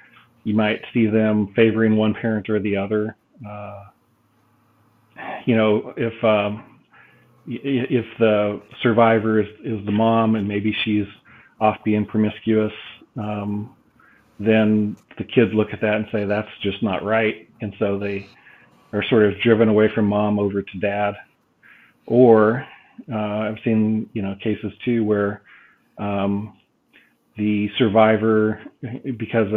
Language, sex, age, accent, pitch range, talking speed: English, male, 40-59, American, 105-115 Hz, 135 wpm